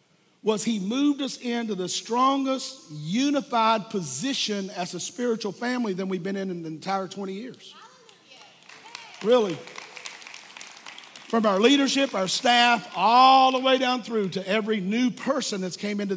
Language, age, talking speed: English, 50-69, 150 wpm